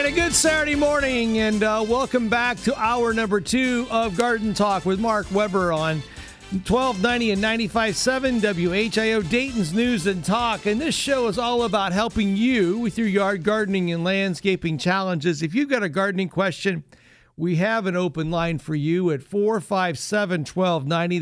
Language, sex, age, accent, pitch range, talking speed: English, male, 50-69, American, 155-205 Hz, 160 wpm